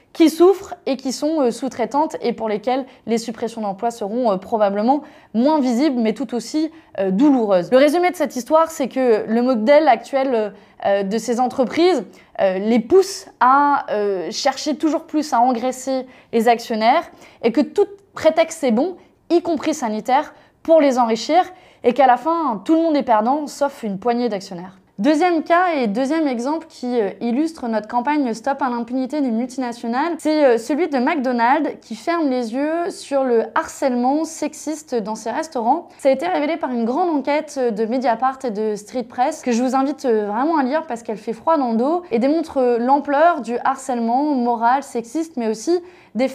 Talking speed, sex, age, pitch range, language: 175 wpm, female, 20-39, 235-310 Hz, French